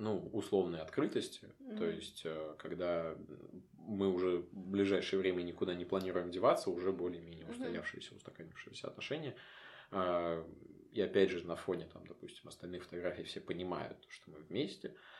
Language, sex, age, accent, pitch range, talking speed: Russian, male, 20-39, native, 85-95 Hz, 135 wpm